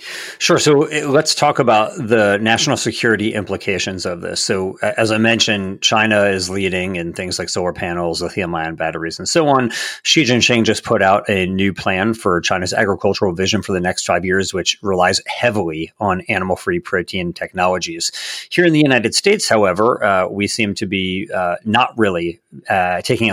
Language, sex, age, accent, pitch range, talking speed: English, male, 40-59, American, 95-115 Hz, 175 wpm